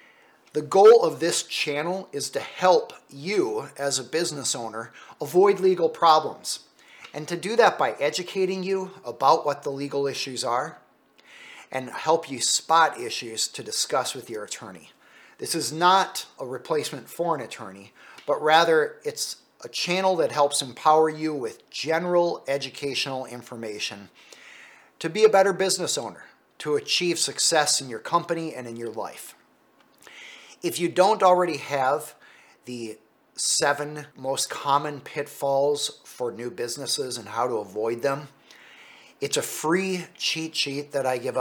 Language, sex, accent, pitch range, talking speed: English, male, American, 135-180 Hz, 150 wpm